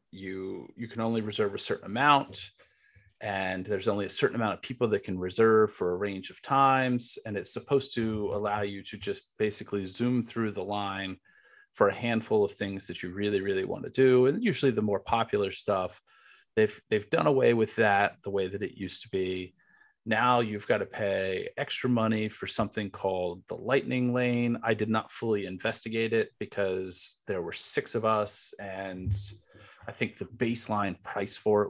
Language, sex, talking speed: English, male, 190 wpm